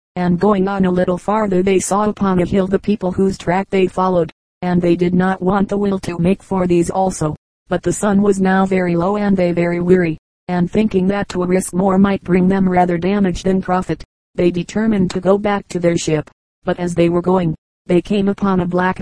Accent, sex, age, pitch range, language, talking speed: American, female, 40-59, 180-195 Hz, English, 225 wpm